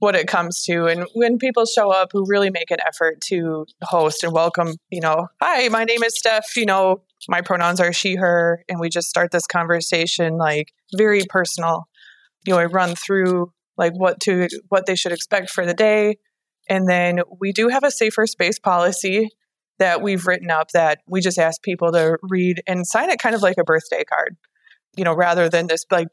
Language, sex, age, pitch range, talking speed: English, female, 20-39, 165-195 Hz, 210 wpm